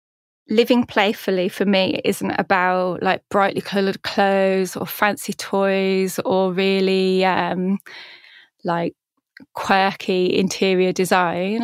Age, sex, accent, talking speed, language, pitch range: 20-39, female, British, 105 wpm, English, 185-205 Hz